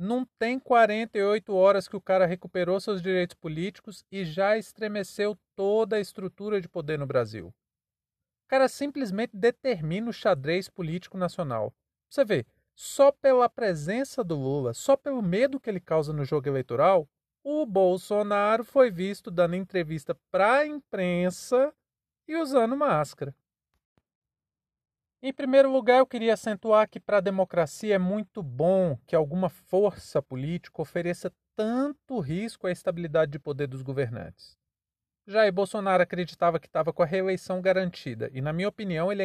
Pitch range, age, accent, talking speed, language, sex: 170-220 Hz, 40-59, Brazilian, 150 wpm, Portuguese, male